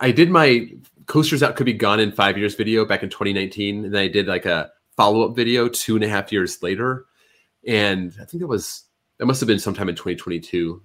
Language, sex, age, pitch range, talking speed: English, male, 30-49, 85-110 Hz, 225 wpm